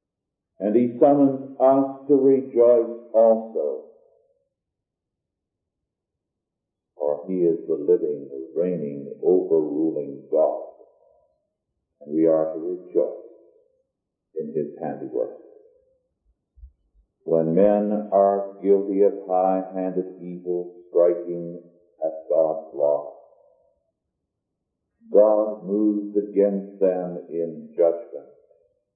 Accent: American